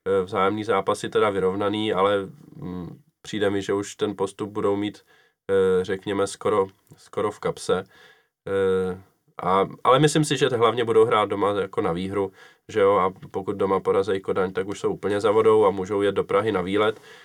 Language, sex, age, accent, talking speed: Czech, male, 20-39, native, 190 wpm